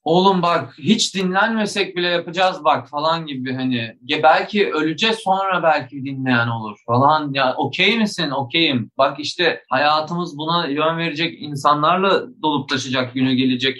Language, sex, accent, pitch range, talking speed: Turkish, male, native, 125-175 Hz, 145 wpm